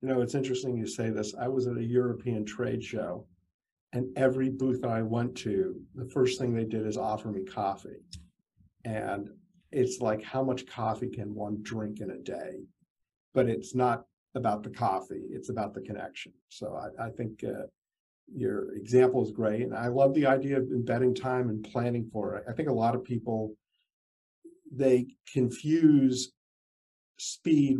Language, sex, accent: English, male, American